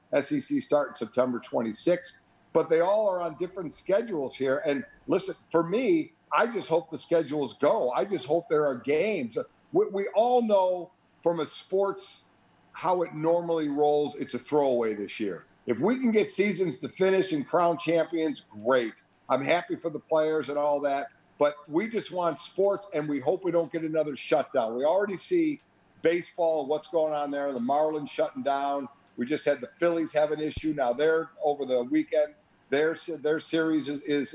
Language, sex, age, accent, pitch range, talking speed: English, male, 50-69, American, 140-175 Hz, 185 wpm